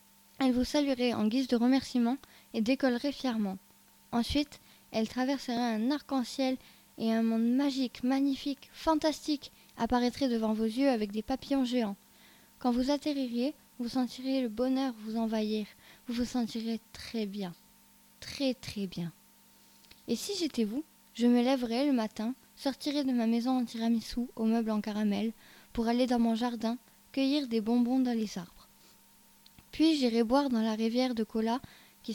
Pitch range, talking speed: 225-265 Hz, 160 wpm